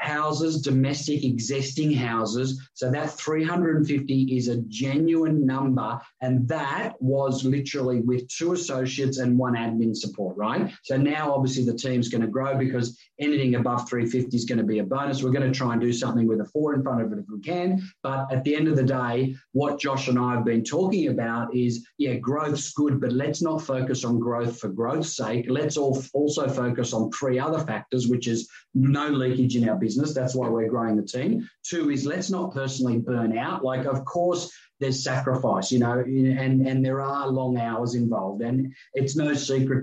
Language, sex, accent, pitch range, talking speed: English, male, Australian, 120-140 Hz, 200 wpm